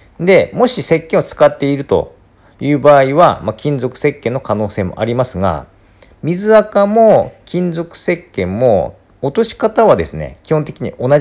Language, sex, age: Japanese, male, 40-59